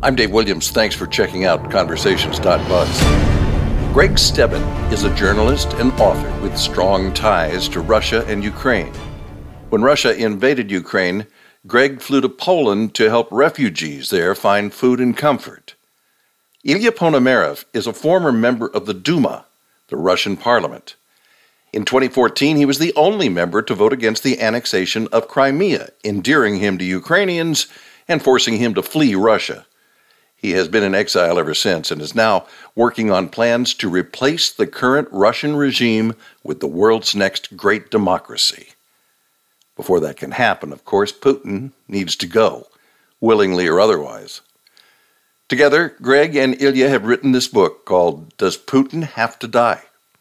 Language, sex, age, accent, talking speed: English, male, 60-79, American, 150 wpm